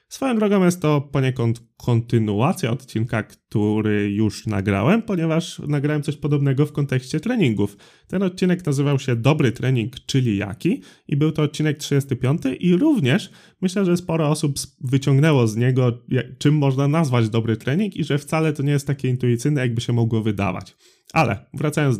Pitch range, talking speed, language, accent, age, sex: 115-170 Hz, 160 wpm, Polish, native, 20-39, male